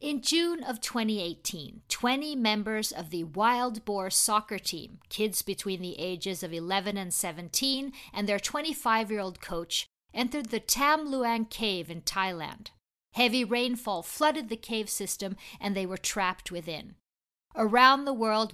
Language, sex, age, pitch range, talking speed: English, female, 50-69, 185-245 Hz, 145 wpm